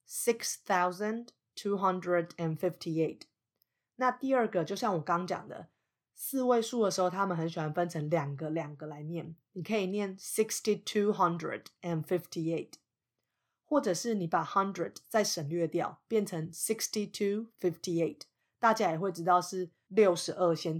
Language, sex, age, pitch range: Chinese, female, 30-49, 160-205 Hz